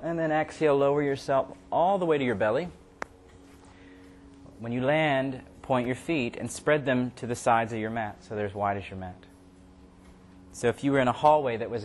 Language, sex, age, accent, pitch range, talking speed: English, male, 30-49, American, 95-130 Hz, 215 wpm